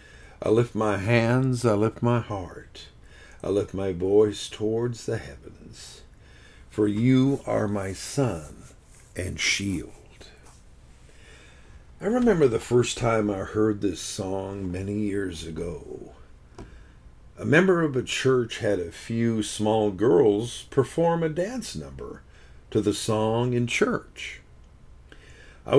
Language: English